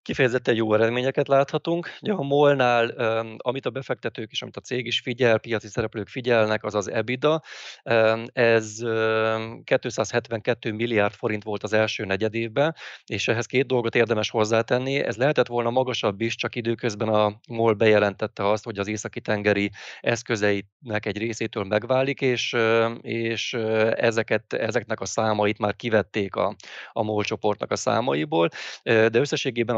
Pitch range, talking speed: 105-120 Hz, 140 wpm